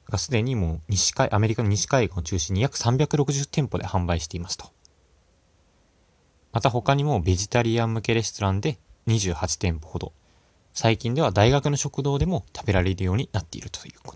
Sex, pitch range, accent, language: male, 85-120 Hz, native, Japanese